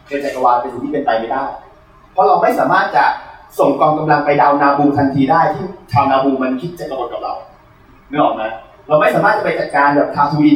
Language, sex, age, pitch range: Thai, male, 30-49, 135-170 Hz